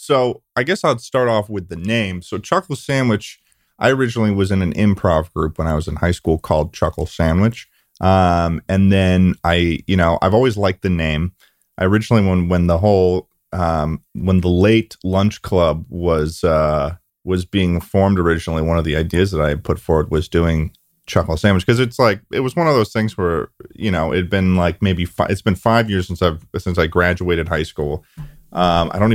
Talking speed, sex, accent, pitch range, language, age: 210 wpm, male, American, 85-105 Hz, English, 30-49